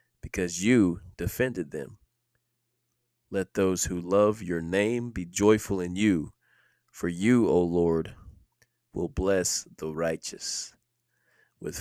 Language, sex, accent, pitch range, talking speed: English, male, American, 90-115 Hz, 115 wpm